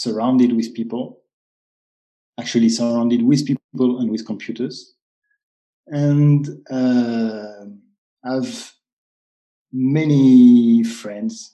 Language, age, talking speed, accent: English, 40-59, 80 wpm, French